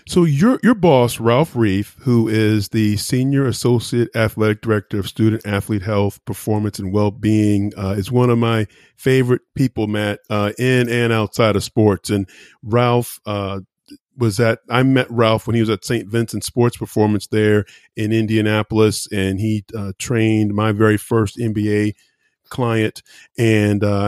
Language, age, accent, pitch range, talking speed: English, 40-59, American, 105-125 Hz, 160 wpm